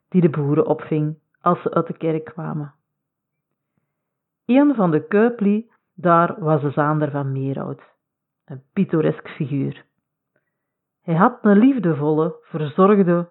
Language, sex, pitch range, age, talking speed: Dutch, female, 150-190 Hz, 40-59, 125 wpm